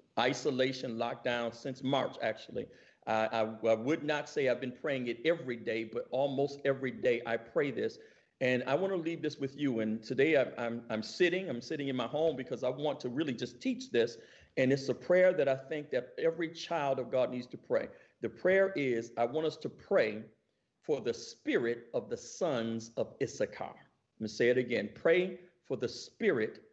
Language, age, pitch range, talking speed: English, 50-69, 120-175 Hz, 200 wpm